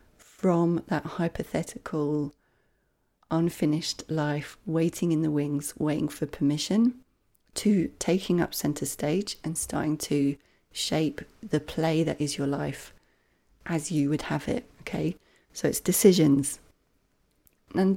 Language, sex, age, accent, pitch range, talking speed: English, female, 30-49, British, 150-195 Hz, 125 wpm